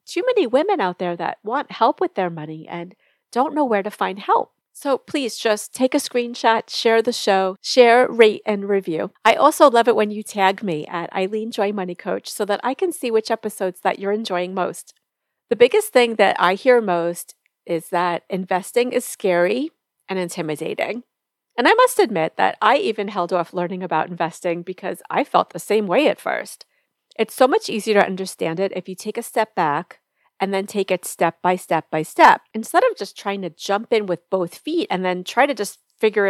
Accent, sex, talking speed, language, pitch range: American, female, 210 wpm, English, 180-235 Hz